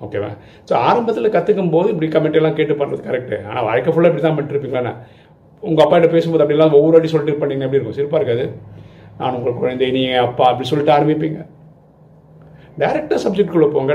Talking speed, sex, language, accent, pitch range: 170 wpm, male, Tamil, native, 120-160 Hz